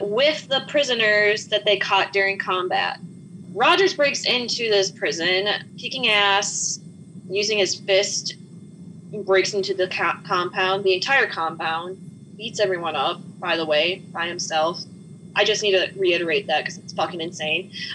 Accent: American